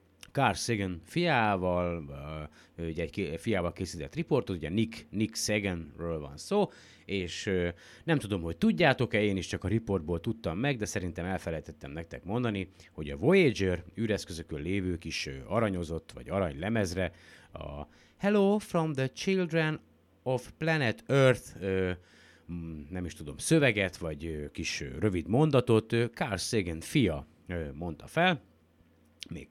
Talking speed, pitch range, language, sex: 145 wpm, 85-125 Hz, Hungarian, male